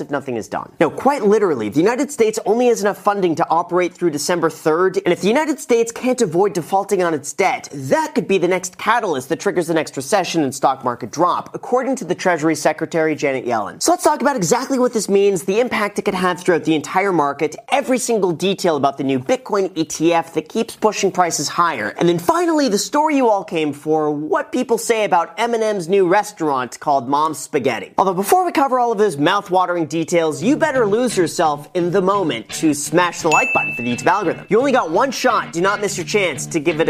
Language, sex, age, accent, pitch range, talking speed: English, male, 30-49, American, 160-215 Hz, 225 wpm